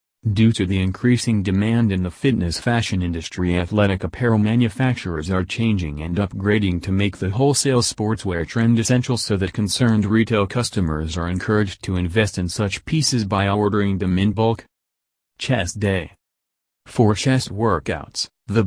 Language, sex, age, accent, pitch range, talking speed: English, male, 40-59, American, 90-115 Hz, 150 wpm